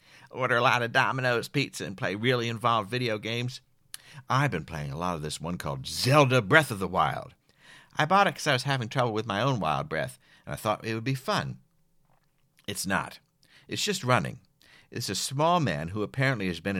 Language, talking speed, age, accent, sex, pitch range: English, 210 wpm, 60-79, American, male, 95-145 Hz